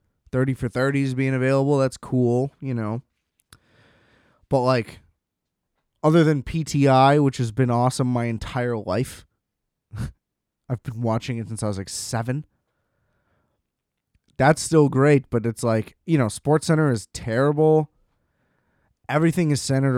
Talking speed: 130 wpm